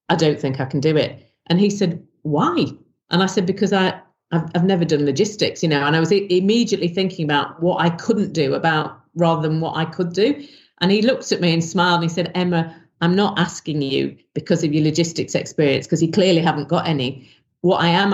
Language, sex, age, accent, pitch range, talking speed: English, female, 40-59, British, 150-175 Hz, 230 wpm